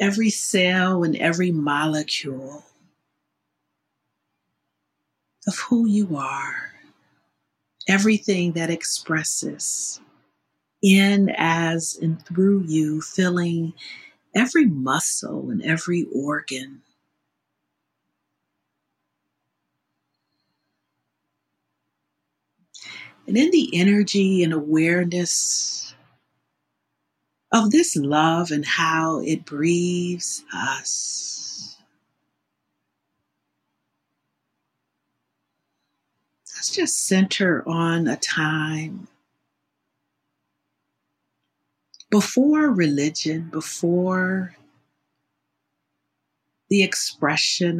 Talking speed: 60 wpm